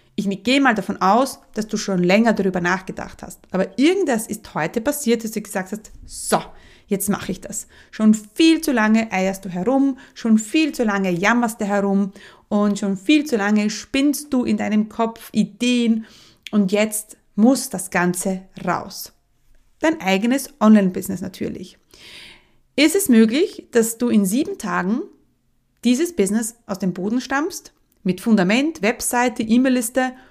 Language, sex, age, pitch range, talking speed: German, female, 30-49, 200-255 Hz, 155 wpm